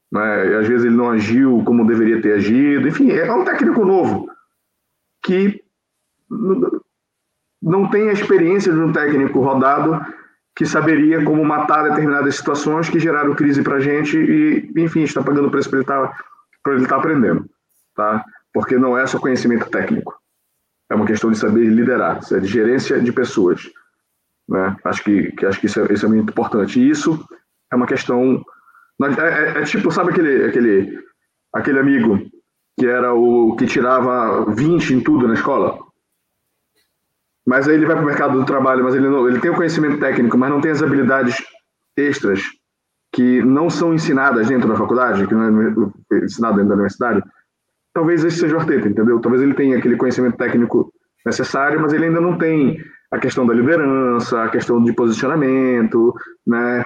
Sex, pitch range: male, 120-160 Hz